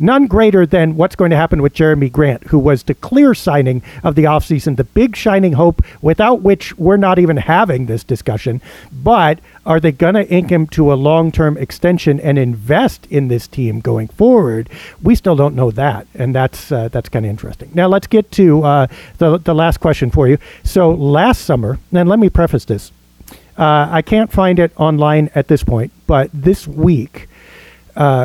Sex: male